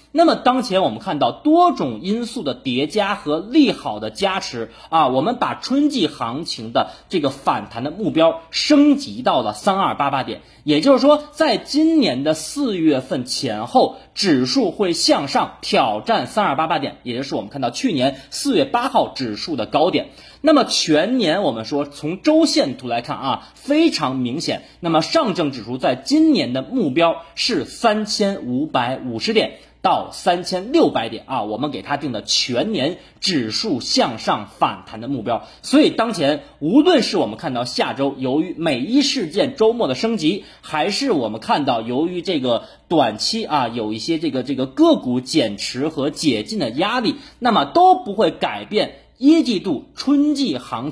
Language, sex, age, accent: Chinese, male, 30-49, native